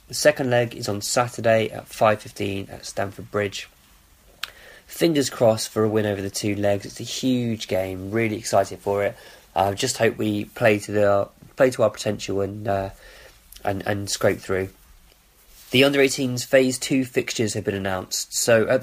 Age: 20-39